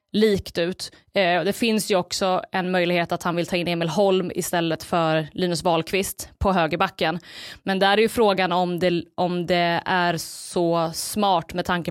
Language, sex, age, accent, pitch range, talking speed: Swedish, female, 20-39, native, 170-200 Hz, 175 wpm